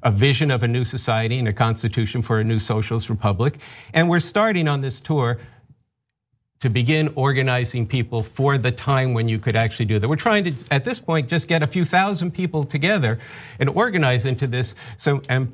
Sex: male